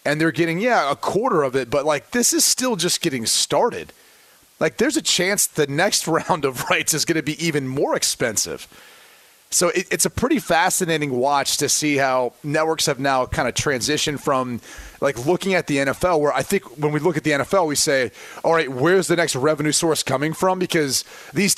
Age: 30-49